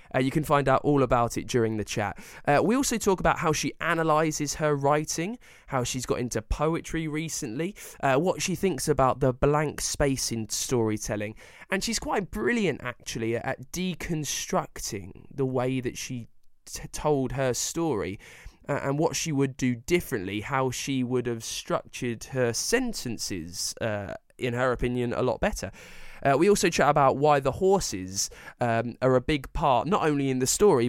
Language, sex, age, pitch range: English, male, 20-39, 120-155 Hz